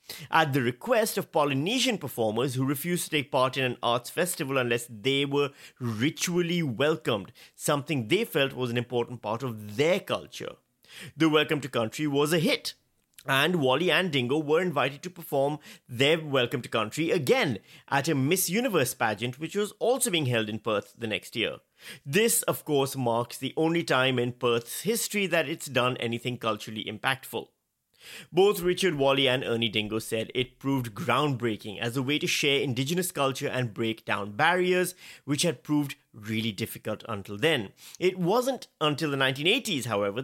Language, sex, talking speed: English, male, 170 wpm